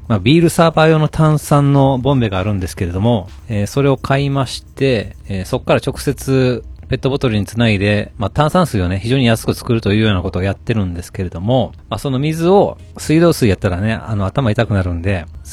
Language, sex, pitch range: Japanese, male, 90-130 Hz